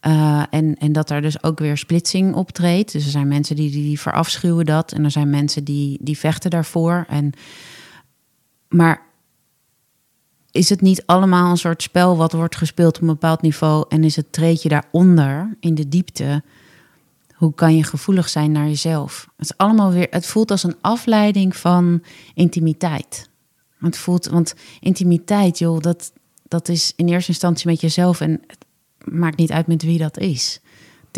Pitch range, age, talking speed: 150-170 Hz, 30-49, 160 wpm